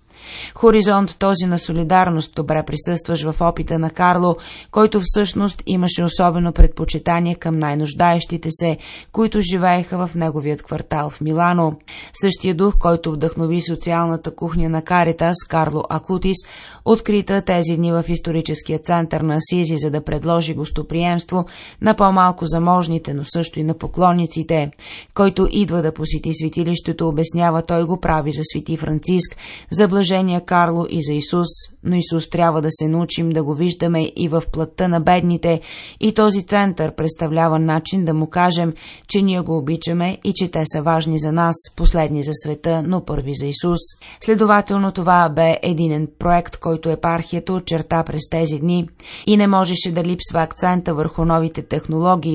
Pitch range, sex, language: 160-180 Hz, female, Bulgarian